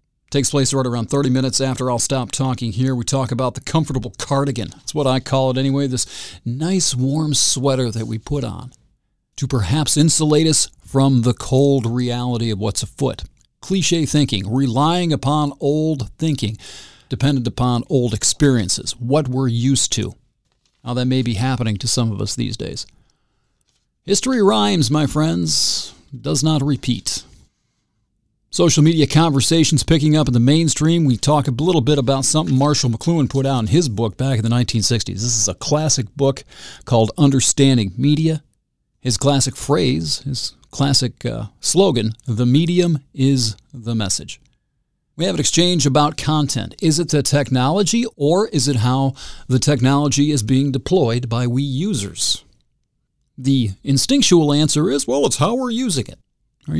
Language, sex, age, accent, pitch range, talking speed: English, male, 40-59, American, 120-150 Hz, 160 wpm